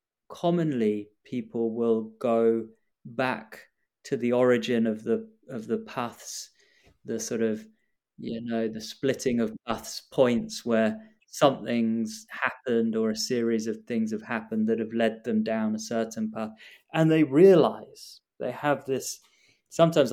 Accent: British